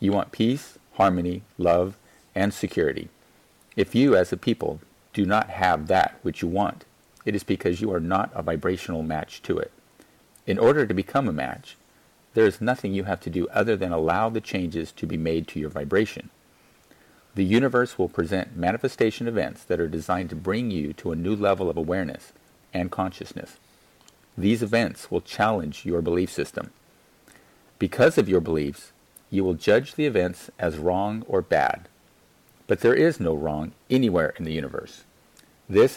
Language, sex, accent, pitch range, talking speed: English, male, American, 80-105 Hz, 175 wpm